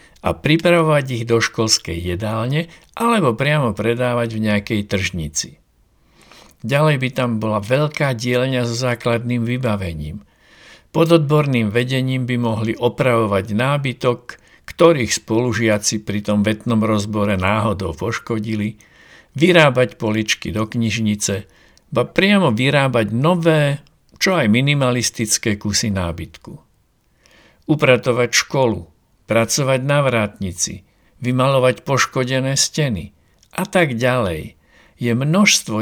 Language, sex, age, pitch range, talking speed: Slovak, male, 60-79, 105-140 Hz, 105 wpm